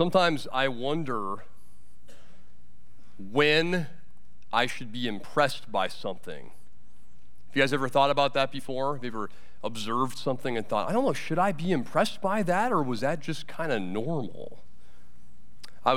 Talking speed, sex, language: 160 wpm, male, English